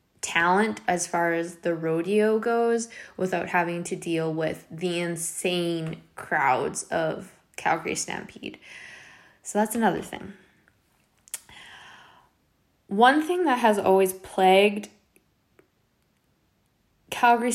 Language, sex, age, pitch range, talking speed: English, female, 10-29, 170-200 Hz, 100 wpm